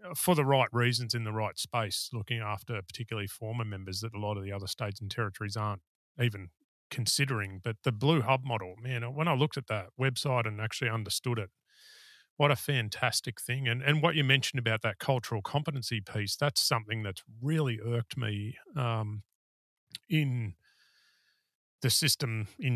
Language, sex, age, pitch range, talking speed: English, male, 30-49, 105-130 Hz, 175 wpm